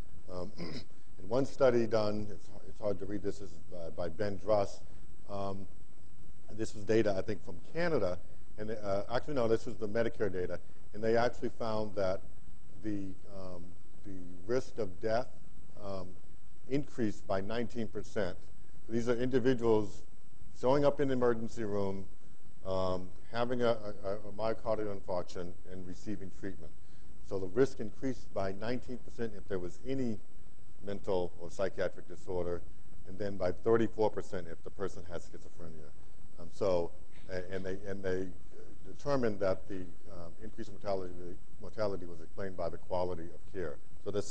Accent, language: American, English